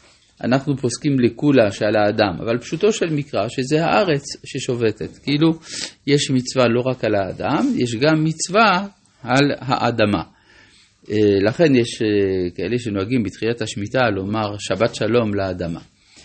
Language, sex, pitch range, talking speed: Hebrew, male, 105-145 Hz, 125 wpm